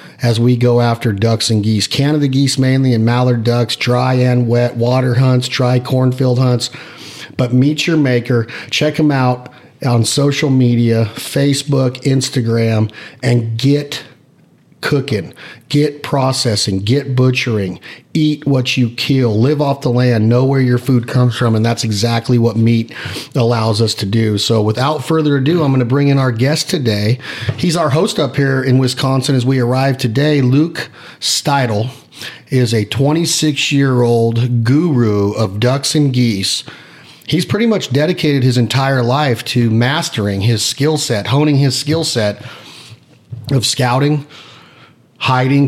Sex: male